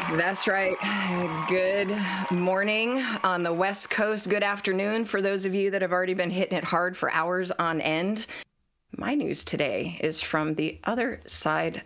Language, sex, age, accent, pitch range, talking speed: English, female, 30-49, American, 150-190 Hz, 165 wpm